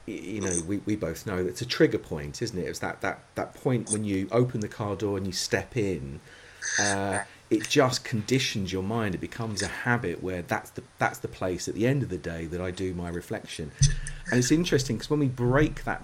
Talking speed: 235 wpm